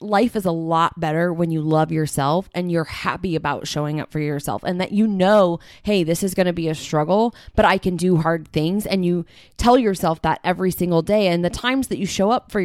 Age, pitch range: 20-39, 165-215 Hz